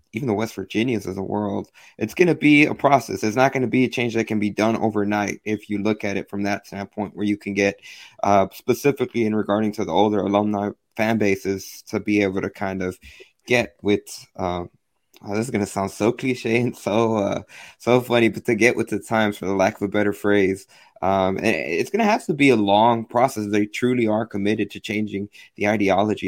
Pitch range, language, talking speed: 100-115 Hz, English, 225 wpm